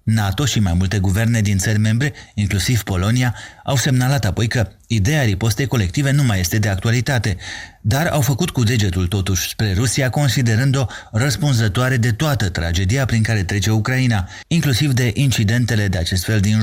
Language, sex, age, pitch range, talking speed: Romanian, male, 30-49, 100-130 Hz, 165 wpm